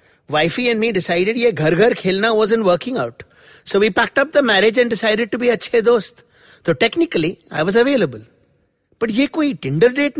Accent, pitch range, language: Indian, 165-255 Hz, English